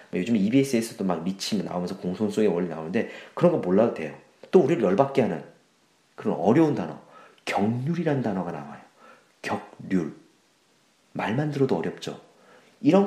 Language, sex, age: Korean, male, 40-59